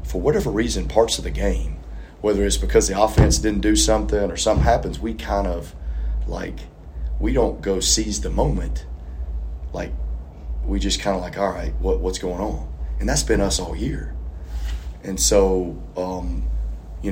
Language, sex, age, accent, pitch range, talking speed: English, male, 30-49, American, 65-95 Hz, 175 wpm